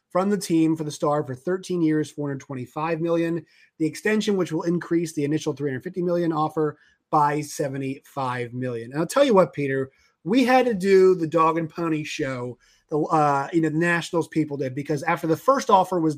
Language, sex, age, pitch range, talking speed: English, male, 30-49, 155-205 Hz, 195 wpm